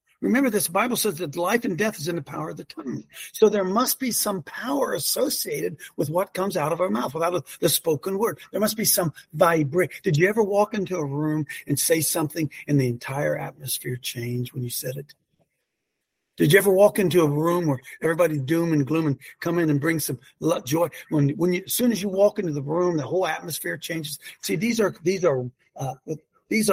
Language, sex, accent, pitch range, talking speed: English, male, American, 150-205 Hz, 220 wpm